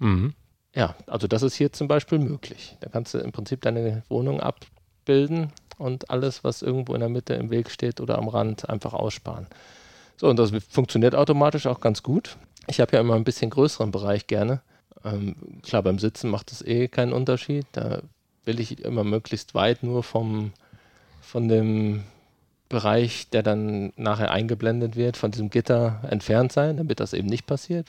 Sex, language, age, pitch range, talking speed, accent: male, German, 40-59, 105-125 Hz, 180 wpm, German